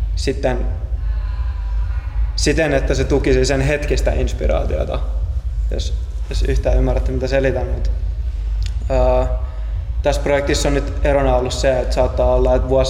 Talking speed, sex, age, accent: 130 wpm, male, 20-39, native